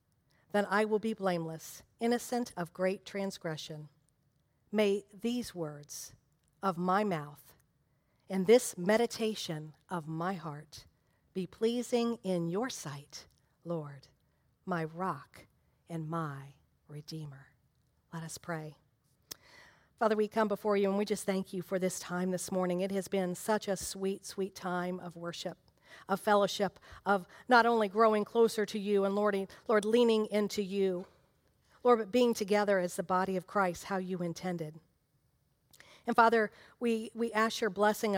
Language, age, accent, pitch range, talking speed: English, 50-69, American, 165-220 Hz, 150 wpm